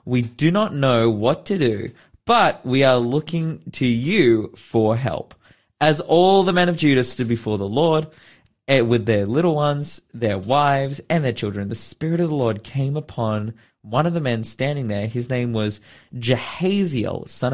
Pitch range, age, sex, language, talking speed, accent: 110-150 Hz, 20-39, male, English, 180 wpm, Australian